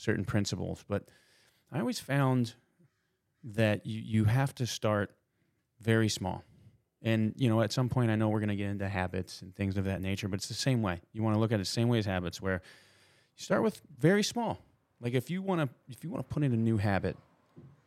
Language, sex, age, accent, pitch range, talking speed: English, male, 30-49, American, 95-120 Hz, 230 wpm